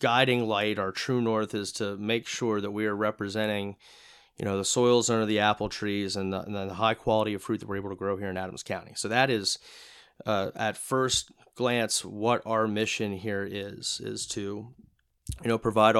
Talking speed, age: 205 wpm, 30-49